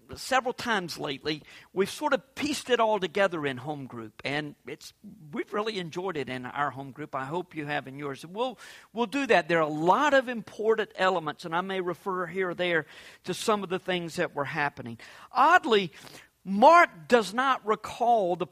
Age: 50-69